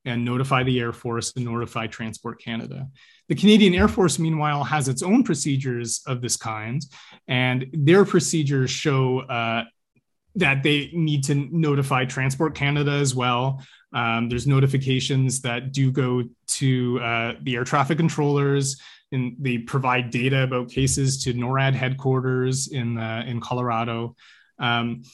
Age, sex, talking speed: 30-49, male, 145 wpm